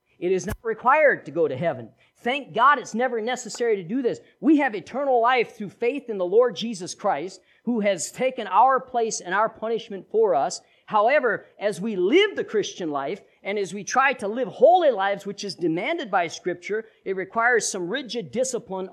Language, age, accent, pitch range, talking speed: English, 50-69, American, 190-280 Hz, 195 wpm